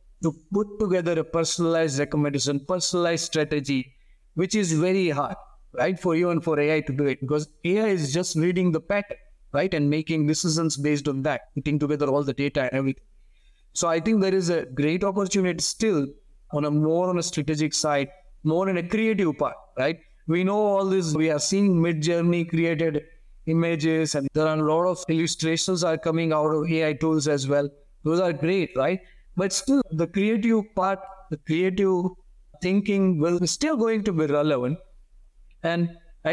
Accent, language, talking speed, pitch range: Indian, English, 180 wpm, 155-190 Hz